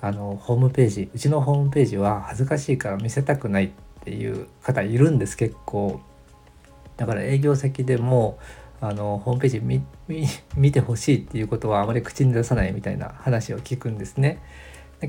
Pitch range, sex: 100-130 Hz, male